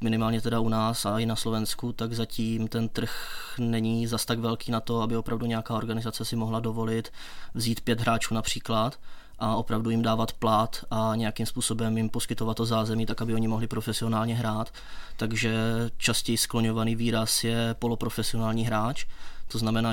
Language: Czech